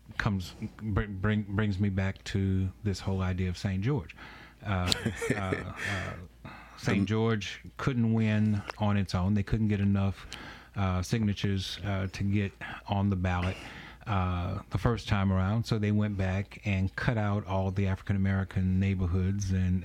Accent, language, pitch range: American, English, 90-105 Hz